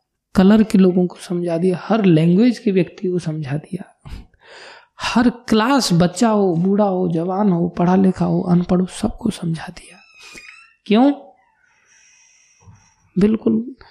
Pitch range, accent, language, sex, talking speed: 170-210 Hz, native, Hindi, male, 135 wpm